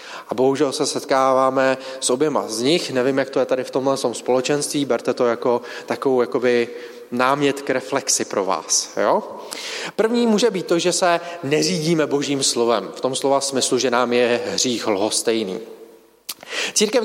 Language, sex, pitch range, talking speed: Czech, male, 135-205 Hz, 160 wpm